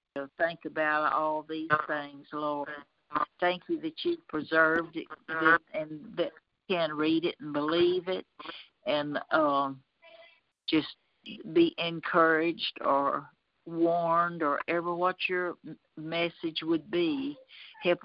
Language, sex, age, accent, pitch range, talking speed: English, female, 60-79, American, 155-175 Hz, 115 wpm